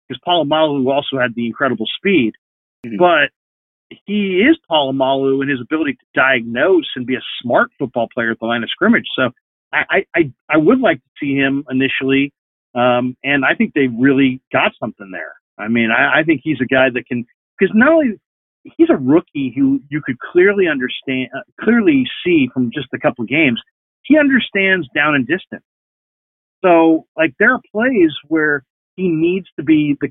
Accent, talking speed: American, 185 wpm